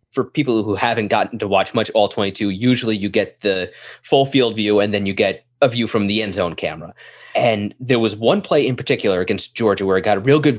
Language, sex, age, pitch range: English, male, 20-39, 105-140 Hz